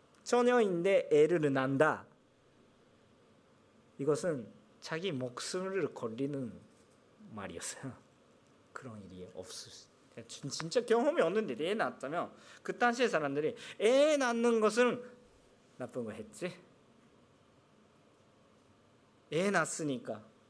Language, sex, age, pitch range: Korean, male, 40-59, 130-215 Hz